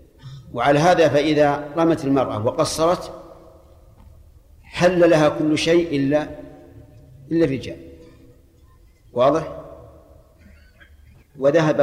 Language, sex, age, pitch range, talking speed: Arabic, male, 50-69, 130-160 Hz, 75 wpm